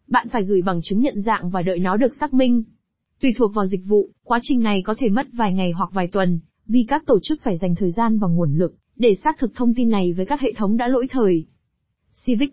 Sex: female